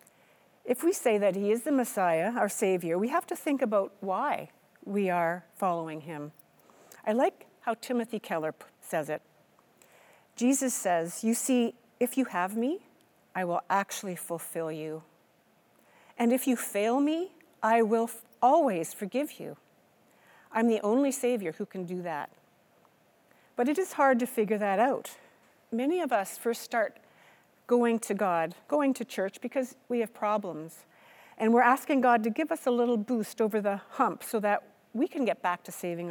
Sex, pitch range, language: female, 180-245 Hz, English